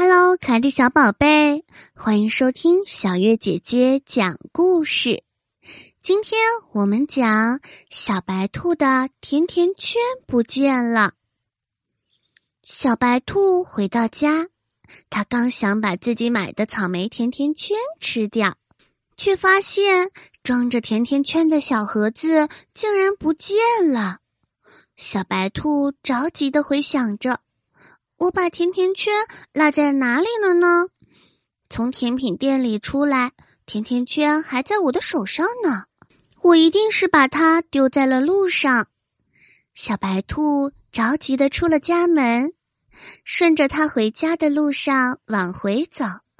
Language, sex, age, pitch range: Chinese, female, 20-39, 235-340 Hz